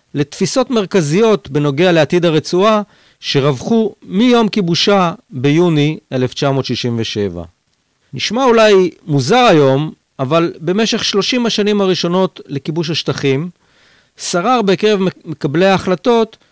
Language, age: Hebrew, 50-69